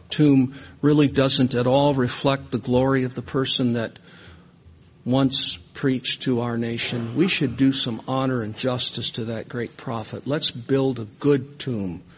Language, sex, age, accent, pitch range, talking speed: English, male, 50-69, American, 125-155 Hz, 165 wpm